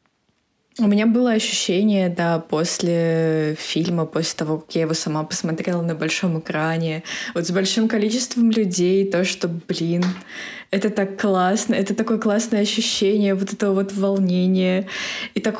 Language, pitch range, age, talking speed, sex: Russian, 170-205 Hz, 20-39, 145 wpm, female